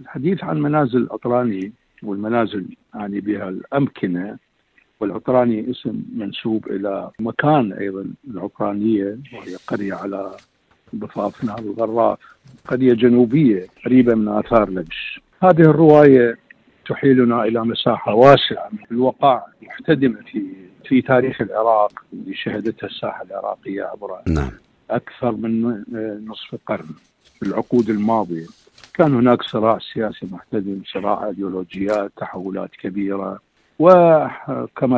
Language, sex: Arabic, male